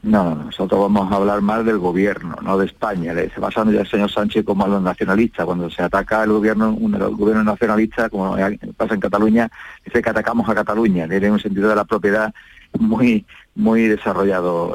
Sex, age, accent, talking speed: male, 40-59, Spanish, 200 wpm